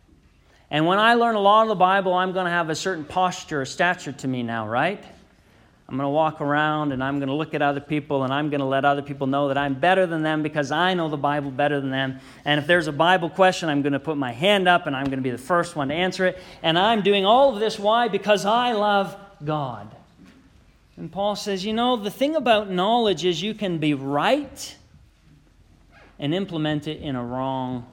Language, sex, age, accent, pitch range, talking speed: English, male, 40-59, American, 140-205 Hz, 240 wpm